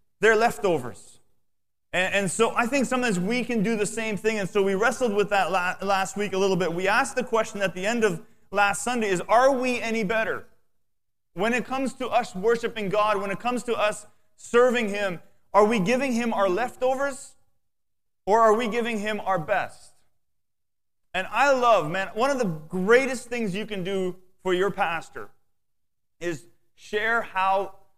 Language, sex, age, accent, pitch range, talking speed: English, male, 30-49, American, 175-225 Hz, 180 wpm